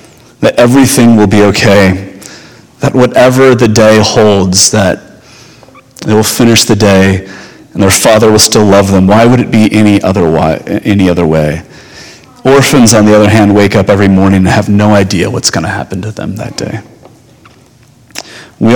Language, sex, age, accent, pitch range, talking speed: English, male, 30-49, American, 100-115 Hz, 170 wpm